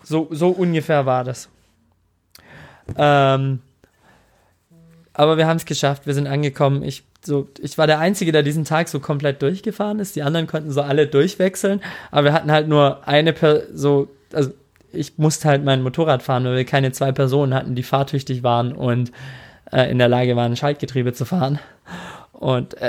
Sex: male